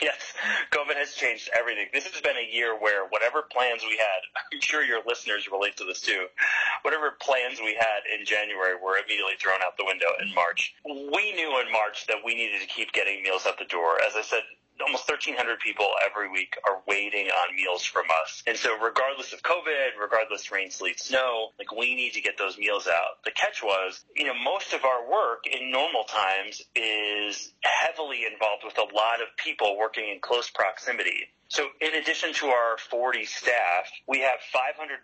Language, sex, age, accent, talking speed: English, male, 30-49, American, 200 wpm